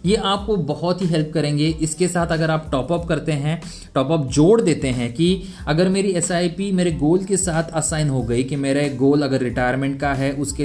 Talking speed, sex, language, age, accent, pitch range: 205 wpm, male, Hindi, 20-39, native, 135-180 Hz